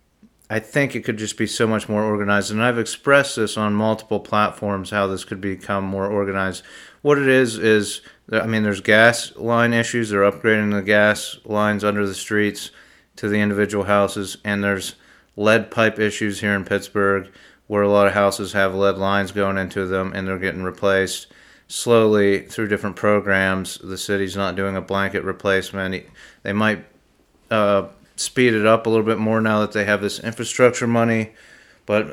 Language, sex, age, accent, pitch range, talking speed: English, male, 30-49, American, 100-110 Hz, 180 wpm